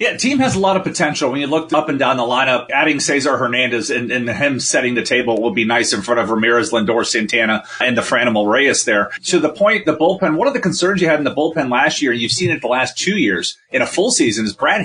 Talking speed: 270 wpm